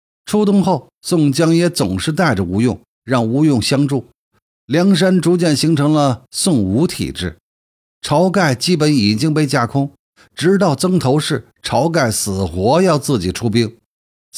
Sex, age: male, 50-69